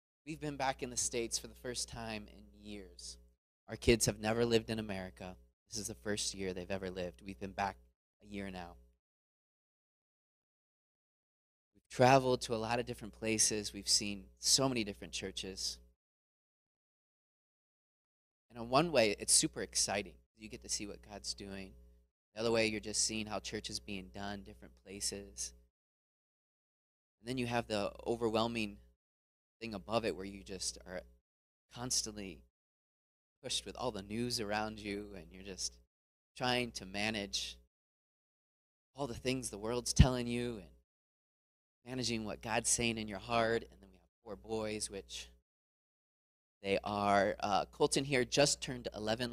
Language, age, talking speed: English, 20-39, 160 wpm